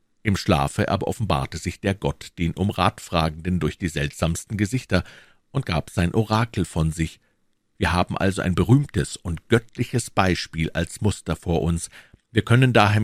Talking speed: 160 wpm